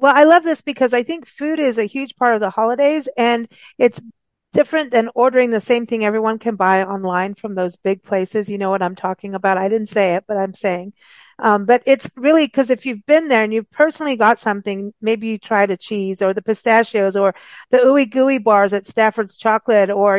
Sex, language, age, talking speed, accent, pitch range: female, English, 50-69, 225 wpm, American, 205-255 Hz